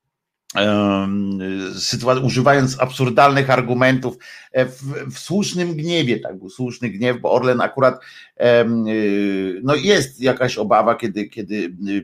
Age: 50-69